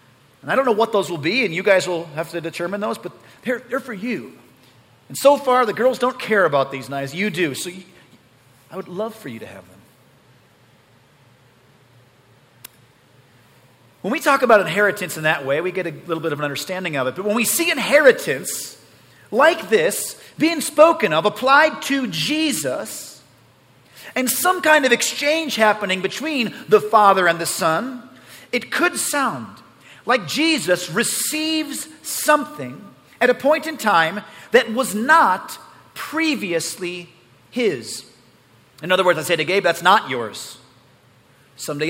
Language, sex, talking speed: English, male, 160 wpm